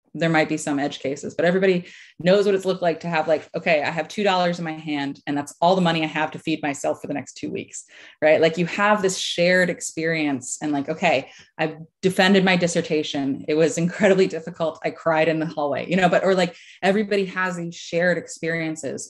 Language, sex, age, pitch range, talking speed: English, female, 20-39, 155-190 Hz, 225 wpm